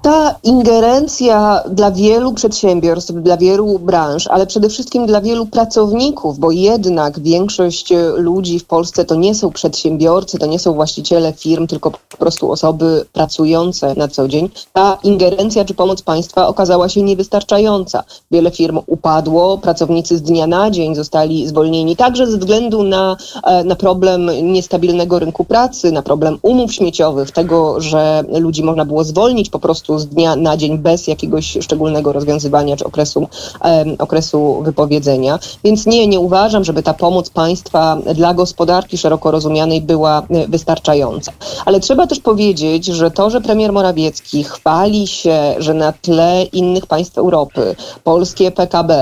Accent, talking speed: native, 150 wpm